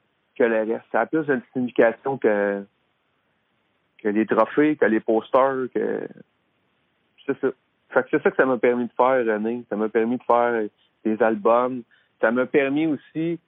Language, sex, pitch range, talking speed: French, male, 115-140 Hz, 170 wpm